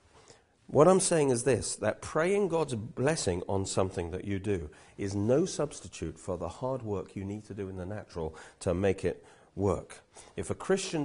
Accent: British